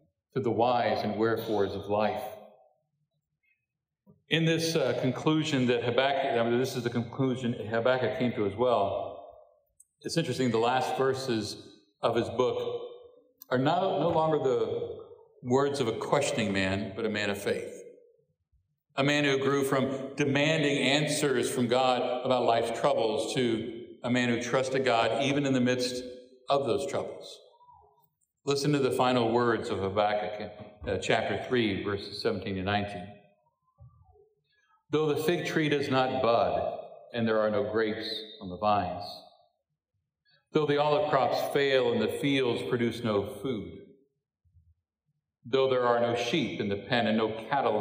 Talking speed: 155 wpm